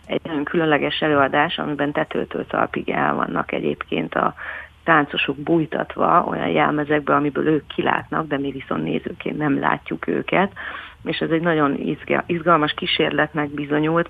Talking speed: 135 wpm